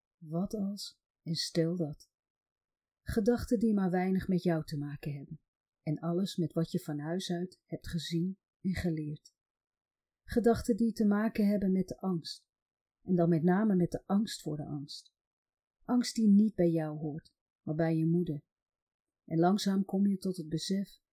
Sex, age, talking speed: female, 40-59, 175 wpm